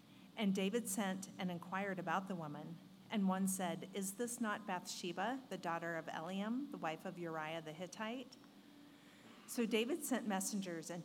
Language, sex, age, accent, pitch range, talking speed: English, female, 40-59, American, 170-215 Hz, 165 wpm